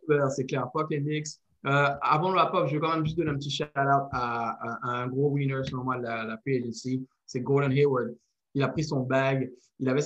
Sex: male